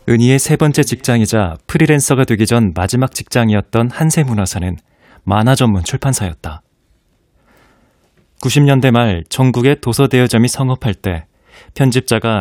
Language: Korean